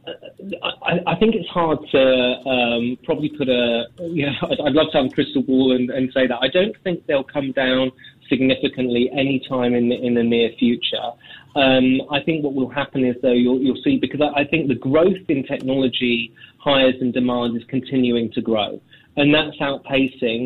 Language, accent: English, British